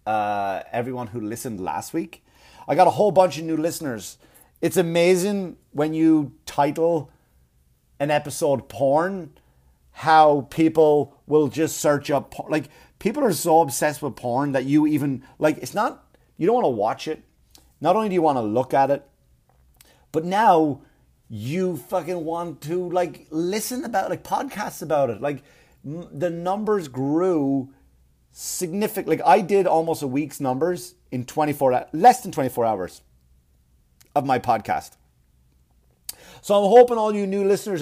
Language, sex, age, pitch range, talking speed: English, male, 30-49, 115-165 Hz, 155 wpm